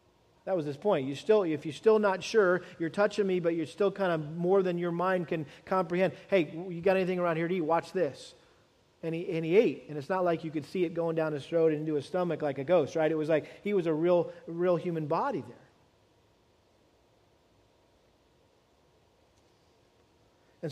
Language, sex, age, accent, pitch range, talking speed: English, male, 40-59, American, 165-205 Hz, 210 wpm